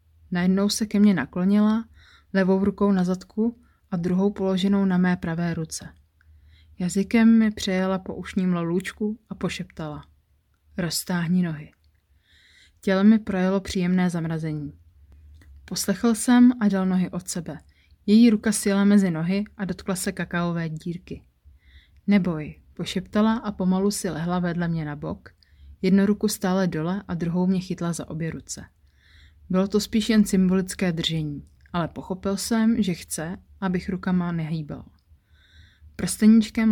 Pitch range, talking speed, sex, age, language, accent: 130-200 Hz, 135 wpm, female, 30-49, Czech, native